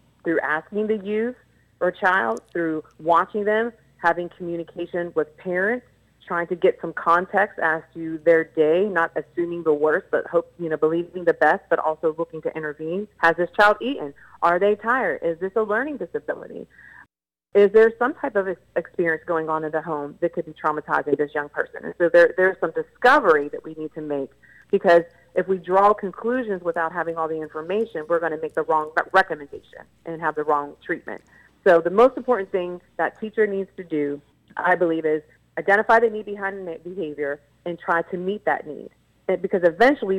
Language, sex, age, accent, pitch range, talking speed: English, female, 30-49, American, 155-195 Hz, 190 wpm